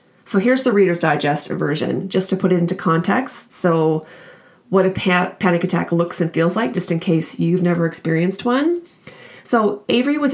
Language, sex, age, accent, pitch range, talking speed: English, female, 30-49, American, 175-210 Hz, 180 wpm